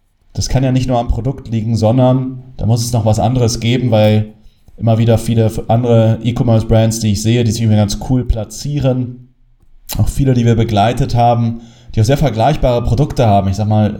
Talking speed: 195 wpm